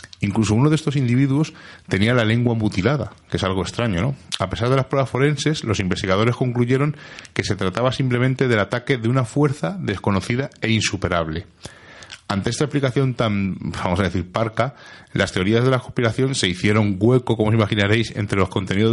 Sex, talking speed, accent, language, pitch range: male, 180 wpm, Spanish, Spanish, 95-125 Hz